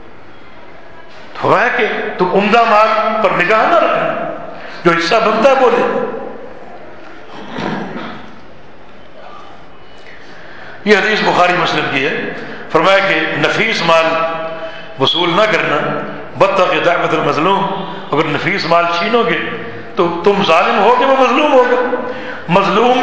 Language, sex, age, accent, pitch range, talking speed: English, male, 60-79, Indian, 180-235 Hz, 105 wpm